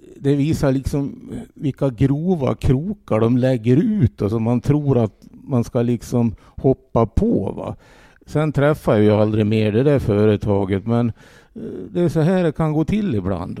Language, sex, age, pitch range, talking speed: English, male, 50-69, 100-130 Hz, 170 wpm